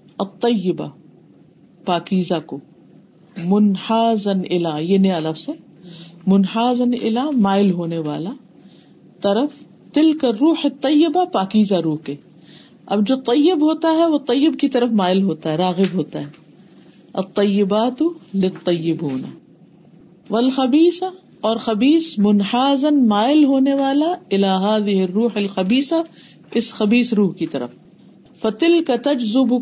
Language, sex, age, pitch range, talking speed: Urdu, female, 50-69, 180-265 Hz, 100 wpm